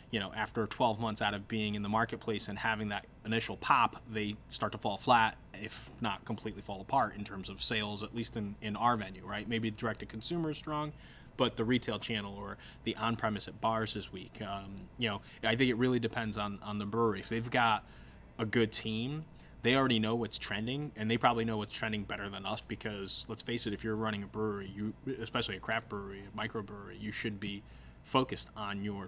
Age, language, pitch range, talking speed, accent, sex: 20-39, English, 105-120 Hz, 225 wpm, American, male